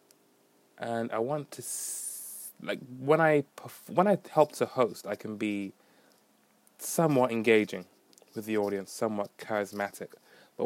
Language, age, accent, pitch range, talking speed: English, 20-39, British, 100-125 Hz, 130 wpm